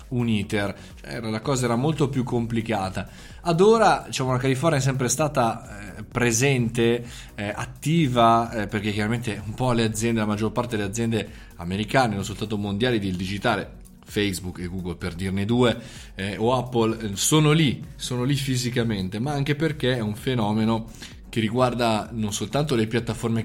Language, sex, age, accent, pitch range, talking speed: Italian, male, 20-39, native, 105-140 Hz, 165 wpm